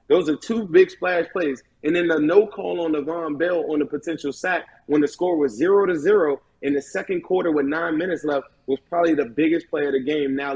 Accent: American